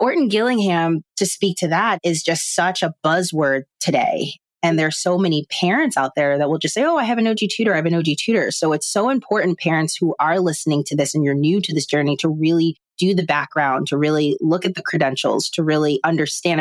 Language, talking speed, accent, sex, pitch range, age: English, 235 wpm, American, female, 145-175 Hz, 30-49